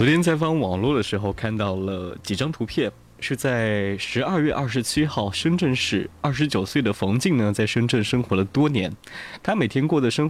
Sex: male